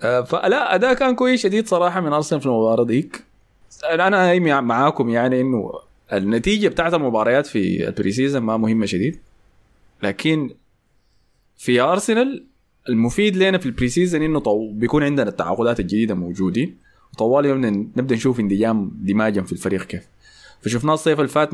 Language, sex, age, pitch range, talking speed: Arabic, male, 20-39, 105-145 Hz, 150 wpm